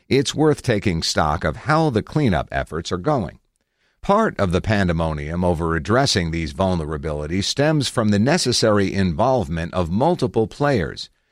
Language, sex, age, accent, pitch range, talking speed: English, male, 50-69, American, 85-125 Hz, 145 wpm